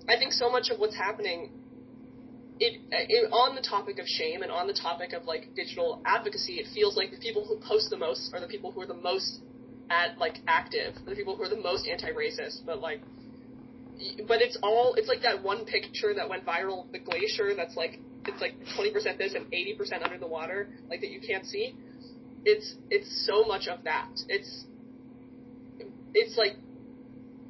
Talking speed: 195 wpm